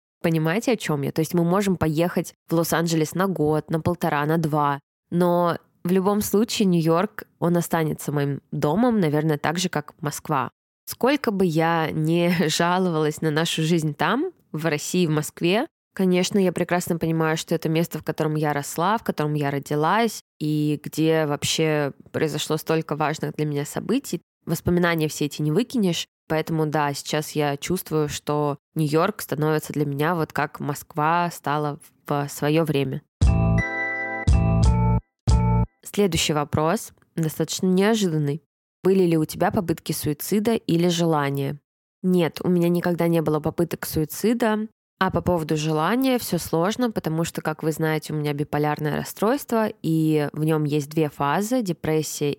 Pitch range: 150-175 Hz